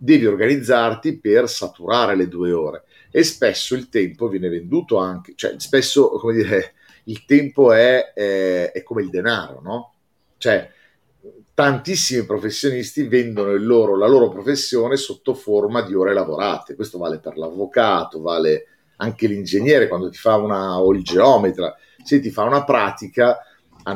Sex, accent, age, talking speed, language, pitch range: male, native, 40-59, 155 wpm, Italian, 100-140 Hz